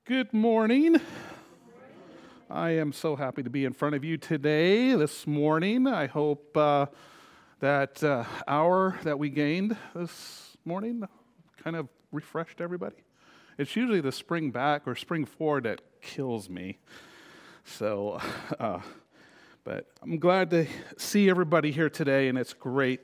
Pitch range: 125-155 Hz